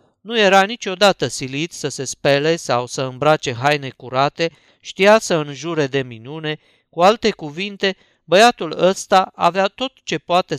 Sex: male